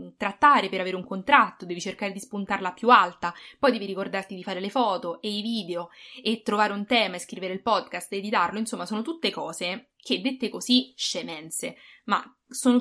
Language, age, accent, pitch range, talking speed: English, 20-39, Italian, 185-250 Hz, 190 wpm